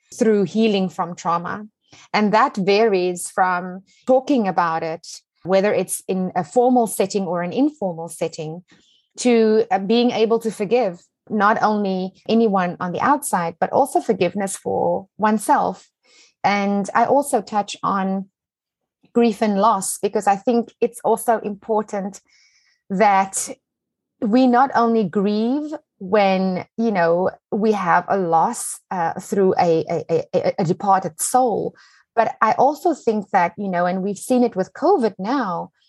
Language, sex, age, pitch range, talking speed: English, female, 30-49, 190-235 Hz, 140 wpm